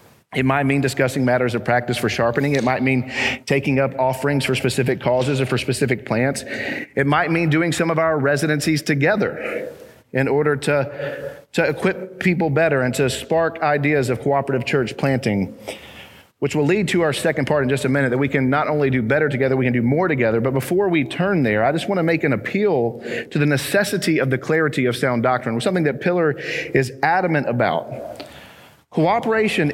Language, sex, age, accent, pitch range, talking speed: English, male, 40-59, American, 135-185 Hz, 200 wpm